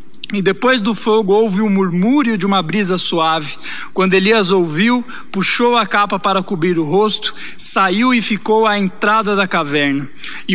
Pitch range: 180-215 Hz